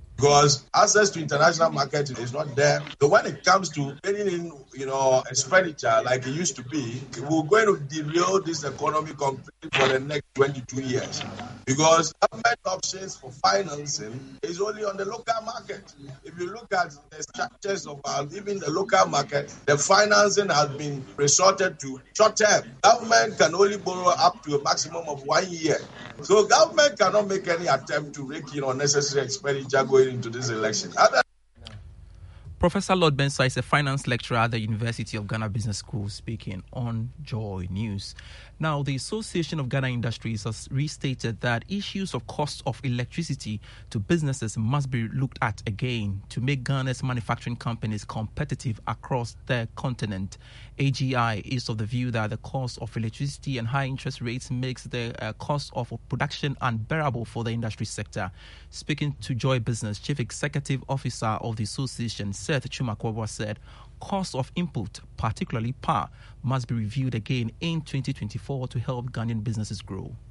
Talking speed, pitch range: 165 wpm, 115-150 Hz